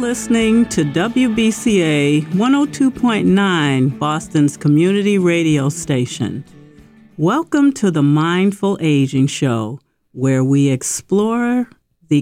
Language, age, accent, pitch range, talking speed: English, 50-69, American, 145-220 Hz, 90 wpm